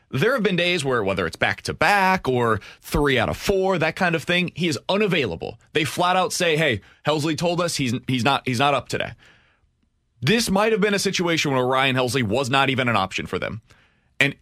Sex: male